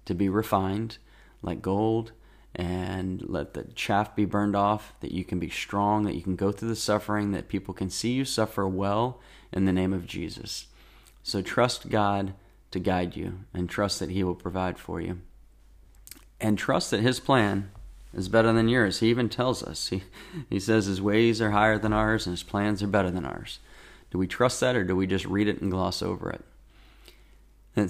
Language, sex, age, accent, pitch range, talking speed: English, male, 30-49, American, 95-110 Hz, 200 wpm